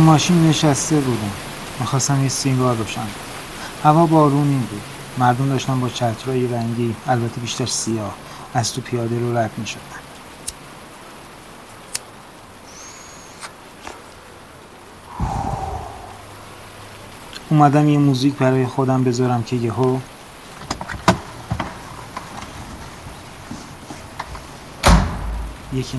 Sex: male